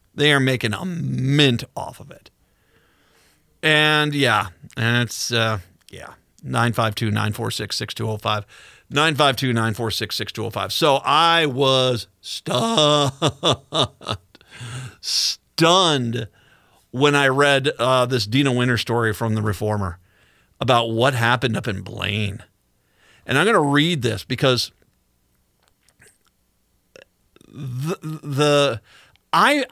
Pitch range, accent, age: 115-155 Hz, American, 50-69